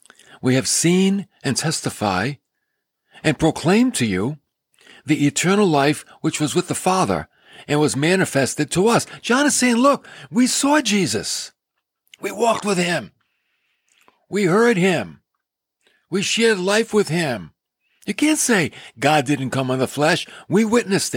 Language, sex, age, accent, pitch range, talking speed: English, male, 60-79, American, 130-195 Hz, 145 wpm